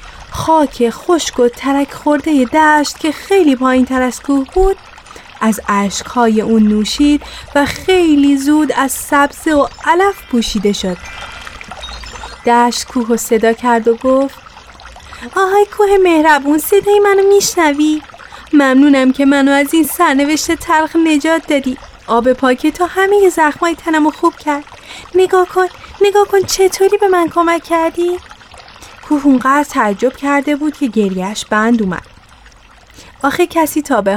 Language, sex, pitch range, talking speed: Persian, female, 225-315 Hz, 140 wpm